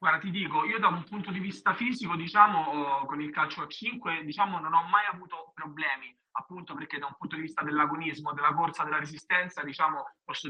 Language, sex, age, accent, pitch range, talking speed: Italian, male, 20-39, native, 140-175 Hz, 205 wpm